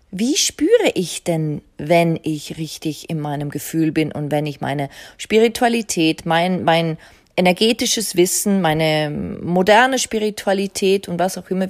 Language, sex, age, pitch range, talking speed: German, female, 30-49, 160-220 Hz, 140 wpm